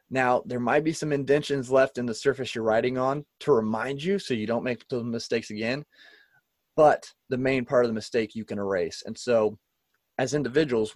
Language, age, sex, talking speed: English, 30-49, male, 205 wpm